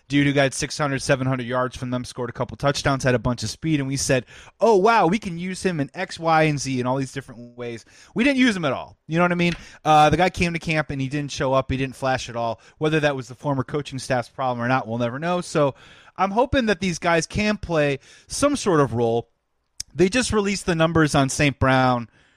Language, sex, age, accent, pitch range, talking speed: English, male, 30-49, American, 130-175 Hz, 260 wpm